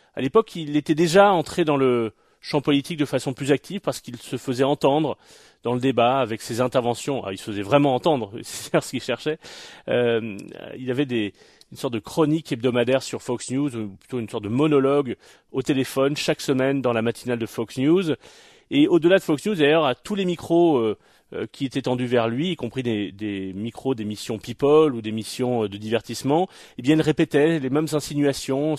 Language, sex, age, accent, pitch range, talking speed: French, male, 30-49, French, 120-160 Hz, 205 wpm